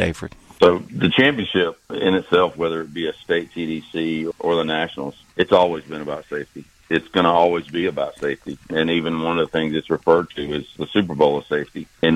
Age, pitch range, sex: 50-69, 80-90 Hz, male